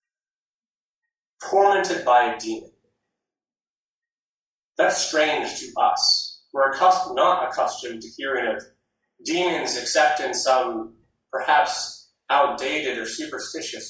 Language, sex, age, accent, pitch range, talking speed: English, male, 30-49, American, 160-220 Hz, 95 wpm